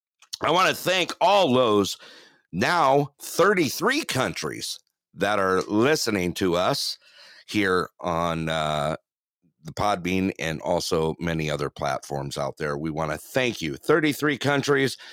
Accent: American